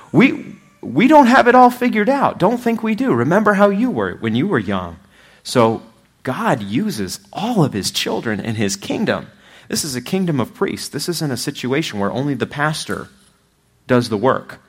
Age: 30-49